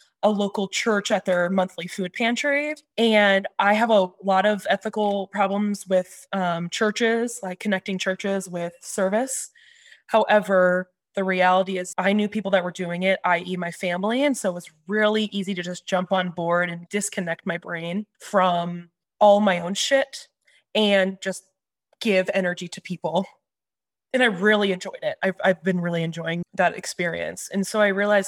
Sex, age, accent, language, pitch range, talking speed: female, 20-39, American, English, 180-210 Hz, 170 wpm